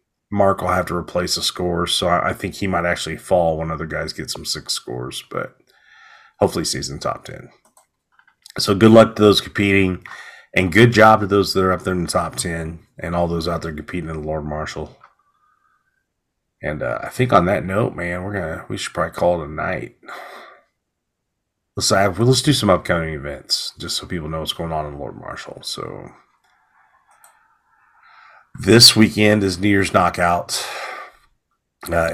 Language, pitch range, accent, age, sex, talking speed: English, 85-100 Hz, American, 30-49, male, 180 wpm